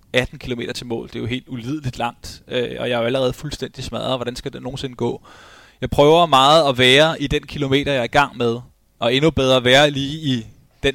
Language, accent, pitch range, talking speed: Danish, native, 120-135 Hz, 235 wpm